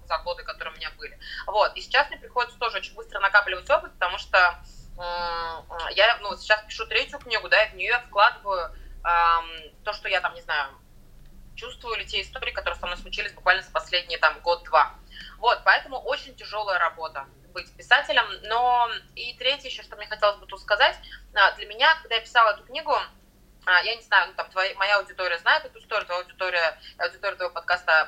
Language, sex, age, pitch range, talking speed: Russian, female, 20-39, 175-215 Hz, 195 wpm